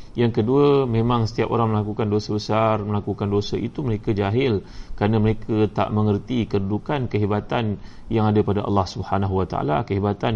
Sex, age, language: male, 30-49, Malay